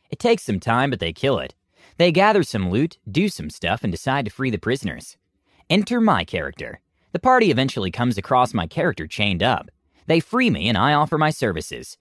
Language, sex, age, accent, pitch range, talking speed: English, male, 30-49, American, 105-165 Hz, 205 wpm